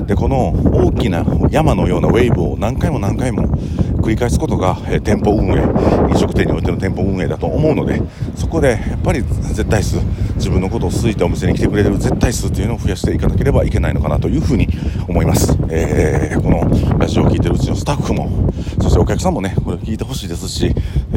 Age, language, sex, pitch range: 40-59, Japanese, male, 80-100 Hz